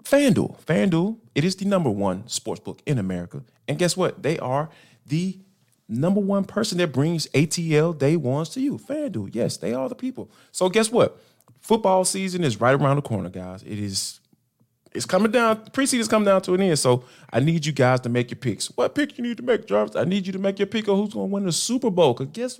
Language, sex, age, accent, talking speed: English, male, 30-49, American, 230 wpm